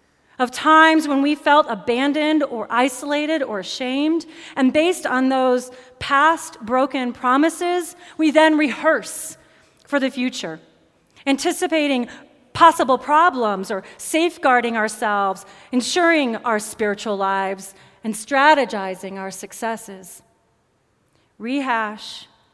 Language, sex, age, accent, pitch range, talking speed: English, female, 30-49, American, 210-300 Hz, 100 wpm